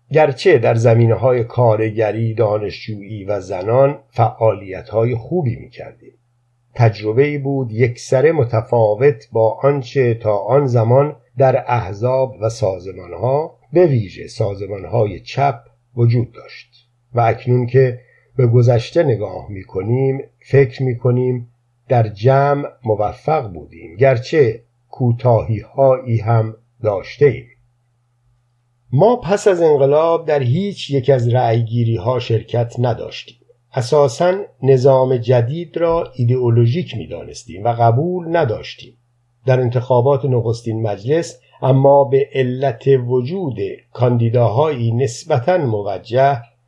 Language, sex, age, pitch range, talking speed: Persian, male, 50-69, 115-135 Hz, 105 wpm